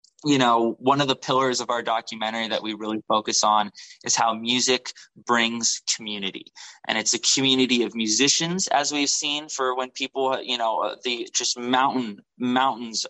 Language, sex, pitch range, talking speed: English, male, 115-130 Hz, 180 wpm